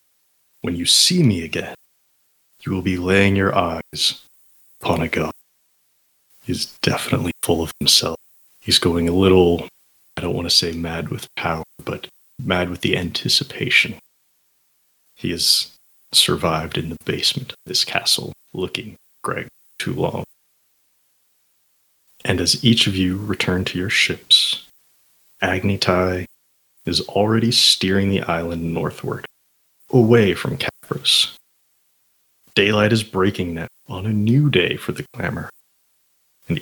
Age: 30-49